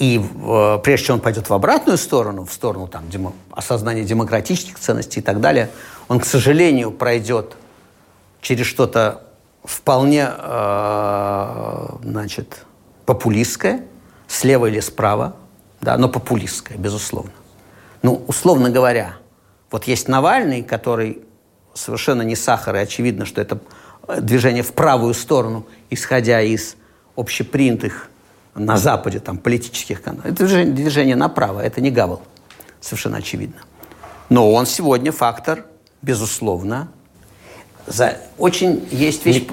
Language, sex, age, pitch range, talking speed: Russian, male, 50-69, 110-135 Hz, 115 wpm